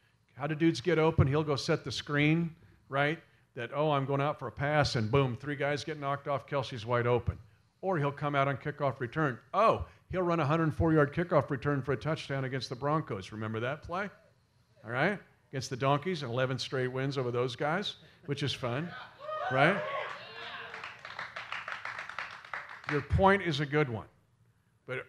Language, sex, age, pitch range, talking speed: English, male, 50-69, 130-165 Hz, 180 wpm